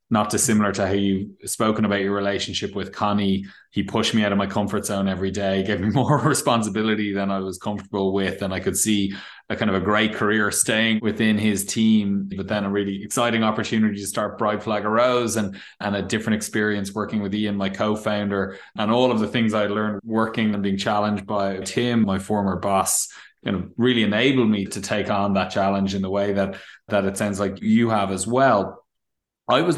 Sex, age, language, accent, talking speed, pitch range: male, 20-39, English, Irish, 210 wpm, 100-110 Hz